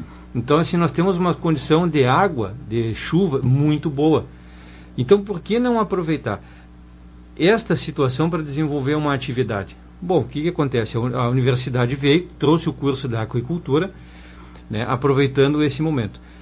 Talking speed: 145 wpm